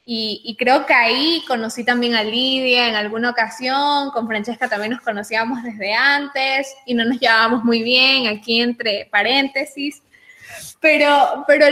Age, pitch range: 10-29, 220-270 Hz